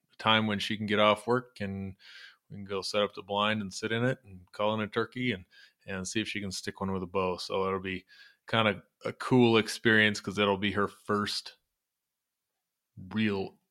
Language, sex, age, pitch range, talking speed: English, male, 20-39, 100-115 Hz, 215 wpm